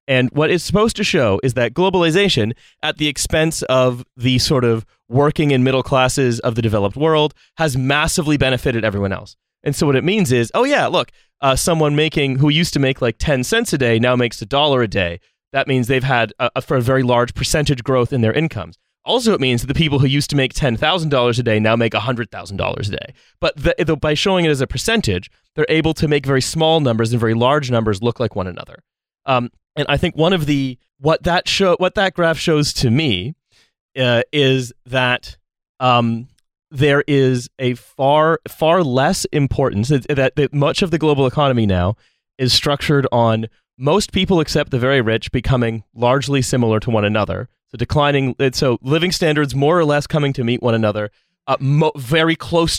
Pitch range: 120-150 Hz